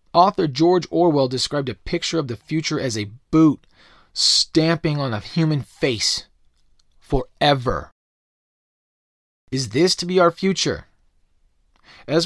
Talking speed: 120 wpm